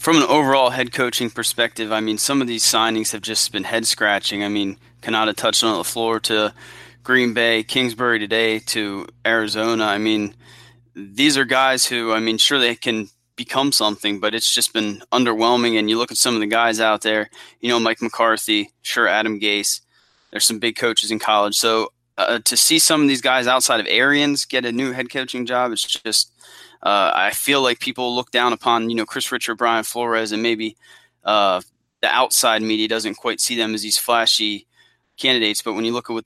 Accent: American